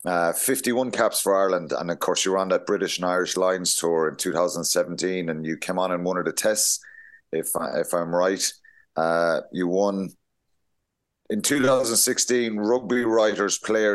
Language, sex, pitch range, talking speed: English, male, 90-115 Hz, 175 wpm